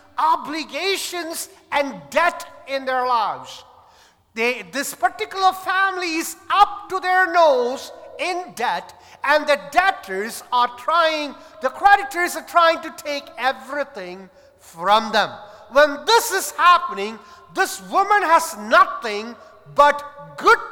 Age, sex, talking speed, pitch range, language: 50-69, male, 115 wpm, 230-370 Hz, English